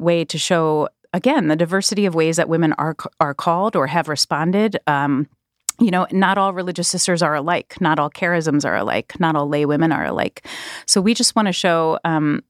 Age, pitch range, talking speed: 30-49, 150-180 Hz, 205 wpm